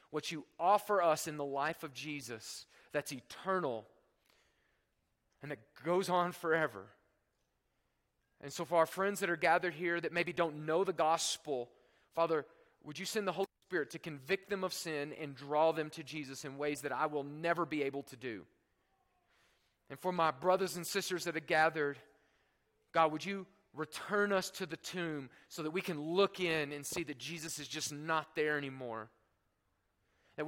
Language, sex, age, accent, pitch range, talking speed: English, male, 30-49, American, 150-195 Hz, 180 wpm